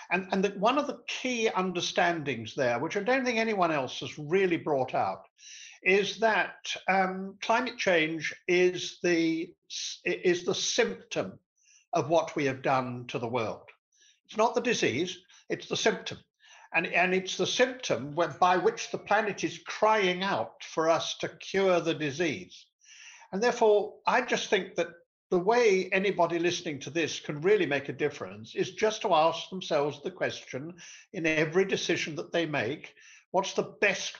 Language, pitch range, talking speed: English, 165-220 Hz, 165 wpm